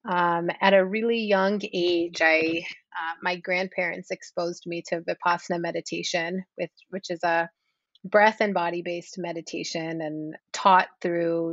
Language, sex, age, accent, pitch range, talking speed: English, female, 30-49, American, 175-195 Hz, 140 wpm